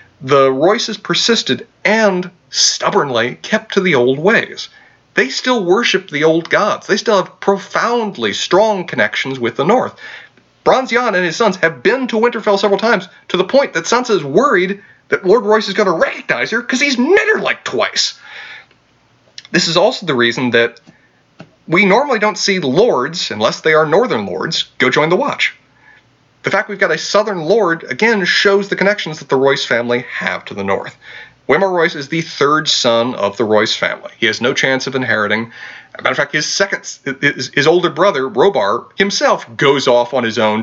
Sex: male